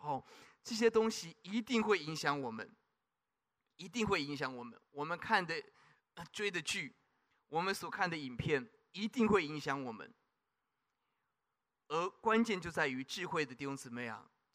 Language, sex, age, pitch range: Chinese, male, 20-39, 135-180 Hz